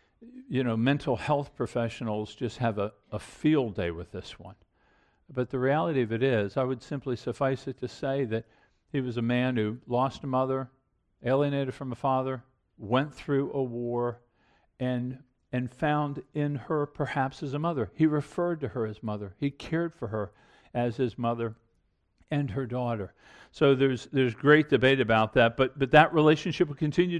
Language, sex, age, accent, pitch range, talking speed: English, male, 50-69, American, 120-150 Hz, 180 wpm